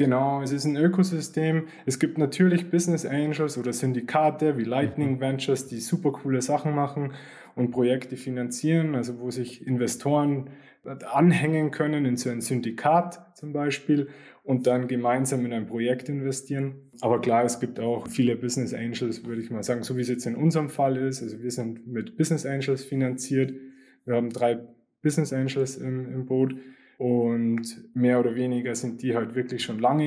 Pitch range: 120-140 Hz